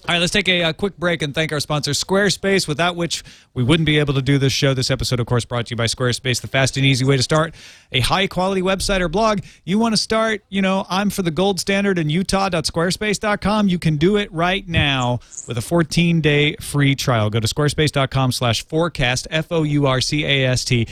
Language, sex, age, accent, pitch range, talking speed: English, male, 40-59, American, 130-180 Hz, 210 wpm